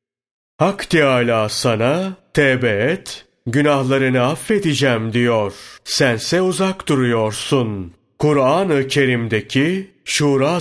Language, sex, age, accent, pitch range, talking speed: Turkish, male, 40-59, native, 120-150 Hz, 80 wpm